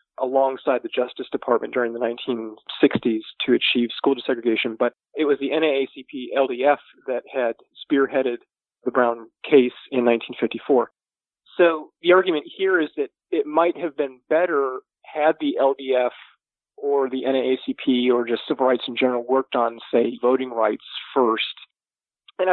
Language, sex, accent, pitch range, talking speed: English, male, American, 120-150 Hz, 145 wpm